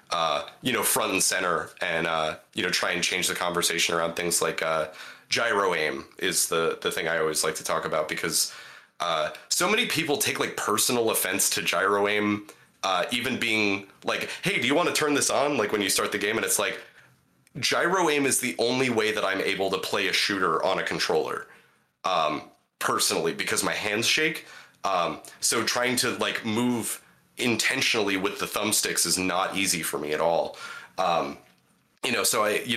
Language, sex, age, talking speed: English, male, 30-49, 200 wpm